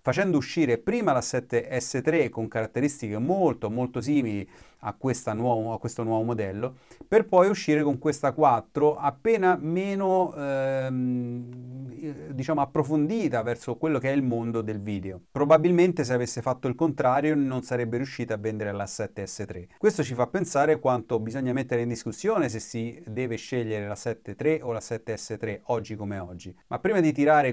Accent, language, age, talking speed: native, Italian, 30-49, 160 wpm